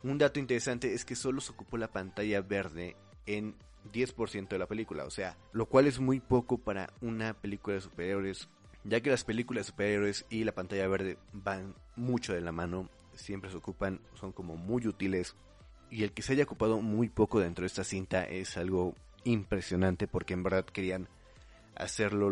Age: 30-49